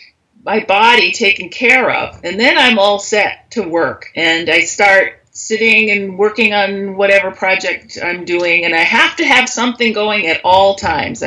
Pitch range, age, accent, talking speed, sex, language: 165-225 Hz, 40-59, American, 175 wpm, female, English